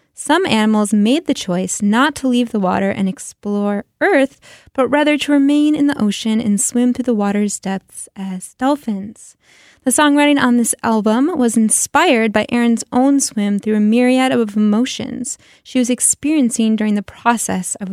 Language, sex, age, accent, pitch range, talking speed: English, female, 10-29, American, 210-275 Hz, 170 wpm